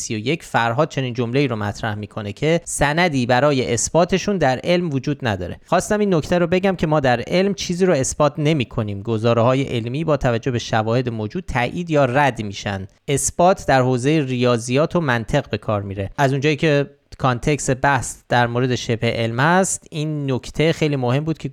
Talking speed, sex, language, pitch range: 185 wpm, male, Persian, 115-160 Hz